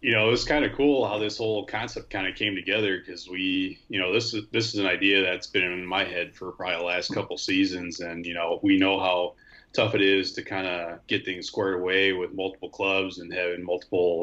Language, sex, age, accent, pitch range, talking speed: English, male, 30-49, American, 90-105 Hz, 240 wpm